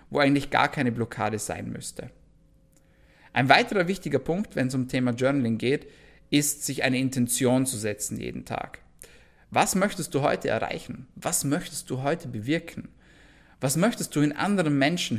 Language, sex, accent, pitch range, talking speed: German, male, German, 125-170 Hz, 160 wpm